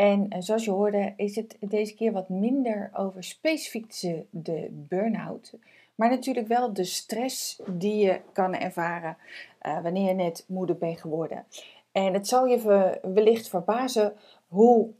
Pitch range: 180-215 Hz